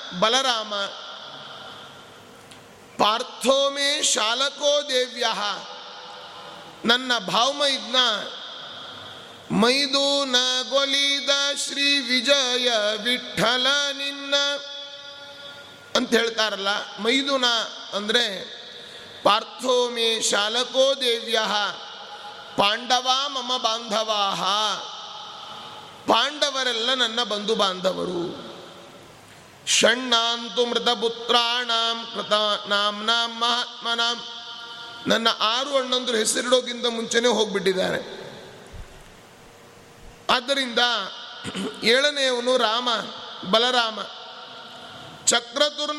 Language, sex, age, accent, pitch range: Kannada, male, 30-49, native, 225-270 Hz